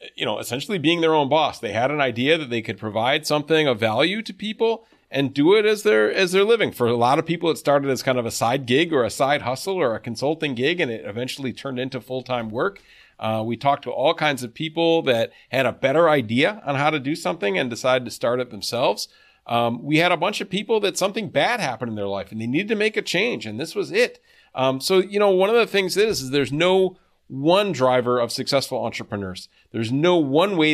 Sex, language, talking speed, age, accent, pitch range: male, English, 250 wpm, 40-59, American, 125-185 Hz